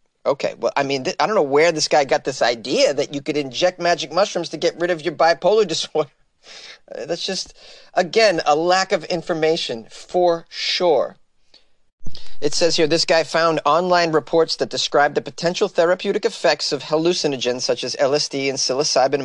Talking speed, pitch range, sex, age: 175 wpm, 140-185 Hz, male, 30-49